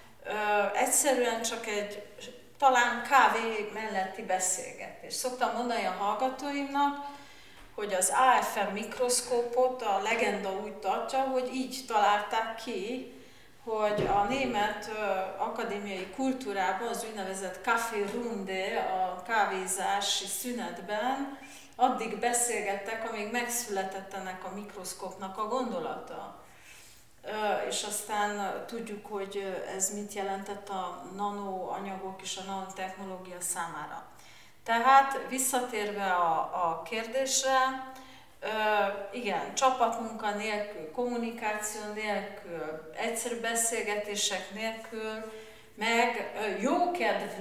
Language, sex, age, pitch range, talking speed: Hungarian, female, 40-59, 195-240 Hz, 90 wpm